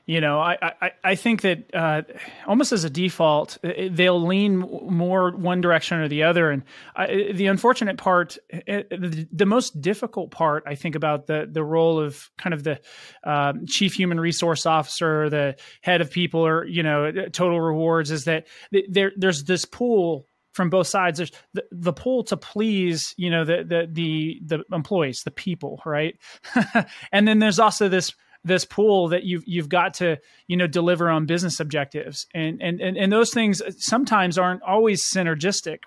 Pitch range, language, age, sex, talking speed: 160-195 Hz, English, 30-49, male, 180 wpm